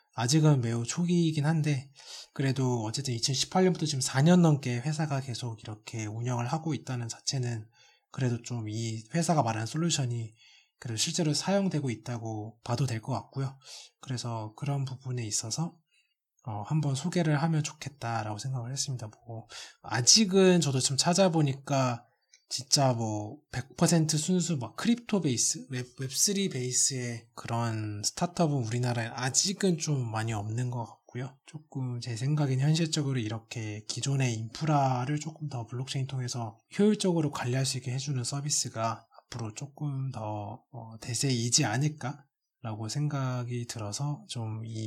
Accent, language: native, Korean